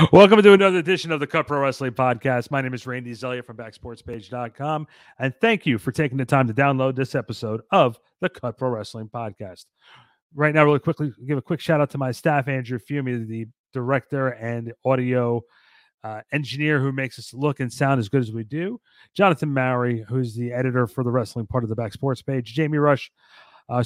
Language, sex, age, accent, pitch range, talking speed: English, male, 40-59, American, 125-160 Hz, 200 wpm